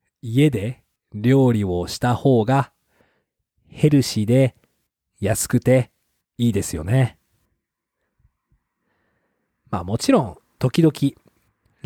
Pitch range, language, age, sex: 110-145 Hz, Japanese, 40-59, male